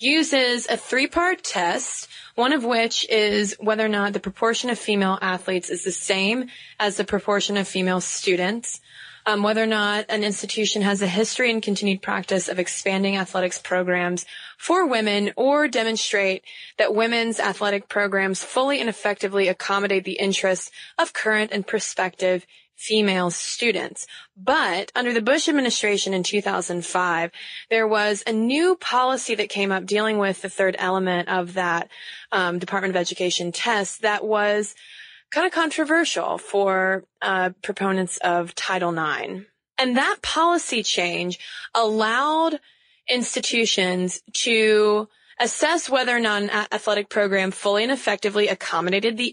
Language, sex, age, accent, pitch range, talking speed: English, female, 20-39, American, 190-230 Hz, 145 wpm